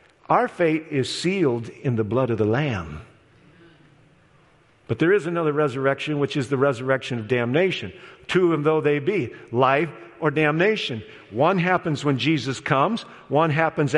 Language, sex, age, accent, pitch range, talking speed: English, male, 50-69, American, 140-185 Hz, 155 wpm